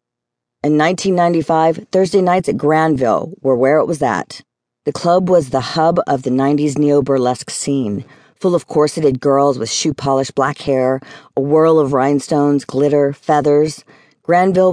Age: 40-59